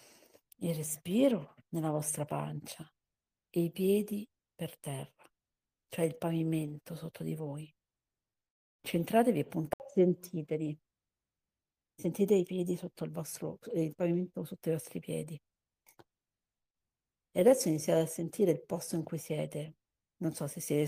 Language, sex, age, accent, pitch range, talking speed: Italian, female, 60-79, native, 150-175 Hz, 130 wpm